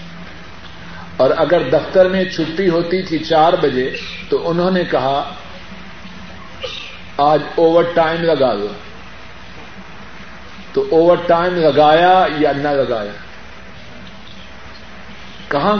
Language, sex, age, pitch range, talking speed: Urdu, male, 50-69, 150-190 Hz, 100 wpm